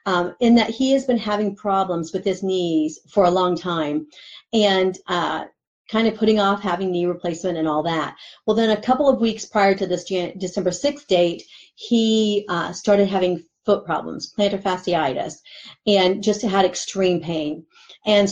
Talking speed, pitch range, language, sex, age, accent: 175 wpm, 175-210 Hz, English, female, 40-59, American